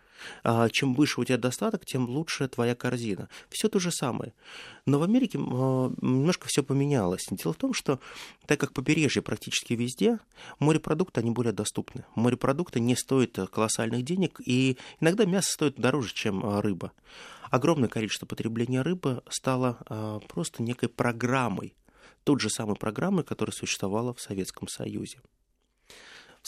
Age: 20-39